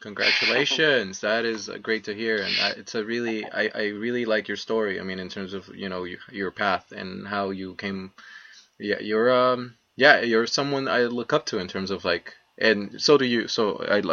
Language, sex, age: English, male, 20-39